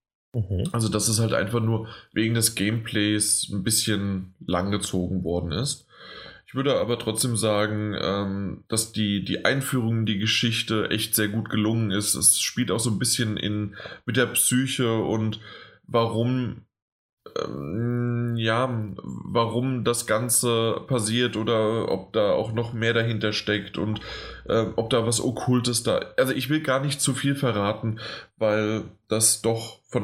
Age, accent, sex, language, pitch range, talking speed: 20-39, German, male, German, 105-120 Hz, 155 wpm